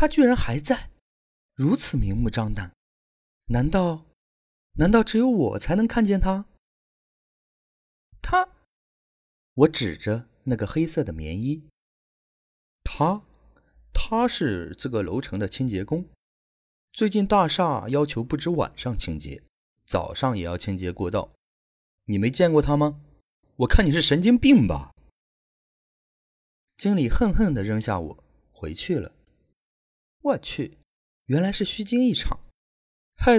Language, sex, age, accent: Chinese, male, 30-49, native